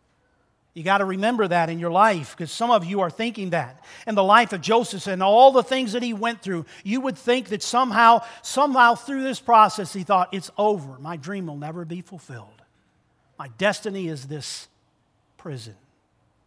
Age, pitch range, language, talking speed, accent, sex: 50-69, 170-245 Hz, English, 190 wpm, American, male